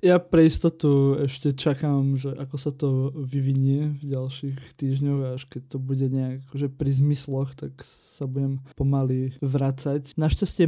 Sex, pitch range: male, 135-150 Hz